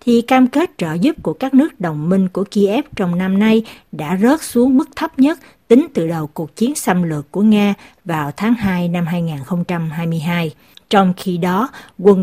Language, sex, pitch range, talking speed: Vietnamese, female, 175-230 Hz, 190 wpm